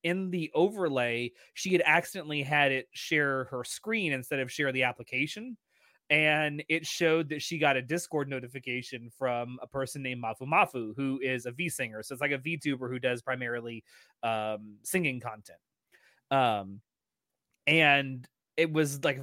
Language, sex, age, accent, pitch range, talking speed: English, male, 20-39, American, 130-160 Hz, 160 wpm